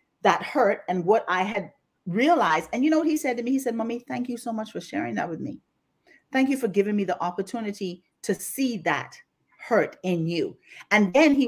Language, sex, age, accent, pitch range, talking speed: English, female, 40-59, American, 205-290 Hz, 225 wpm